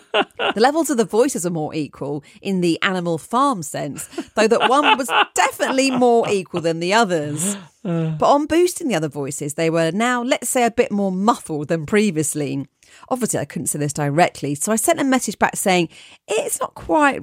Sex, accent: female, British